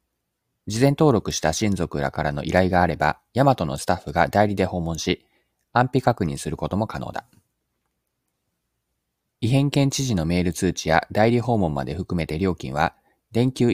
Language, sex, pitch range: Japanese, male, 80-120 Hz